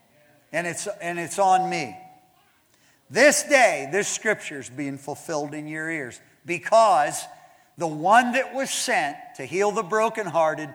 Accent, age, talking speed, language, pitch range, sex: American, 50-69, 145 wpm, English, 170-250 Hz, male